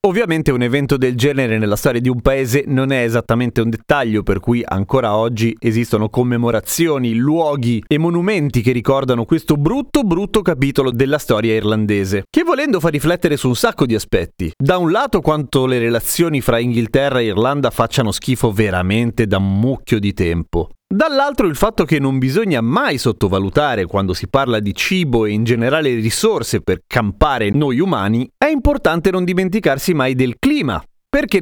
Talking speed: 170 wpm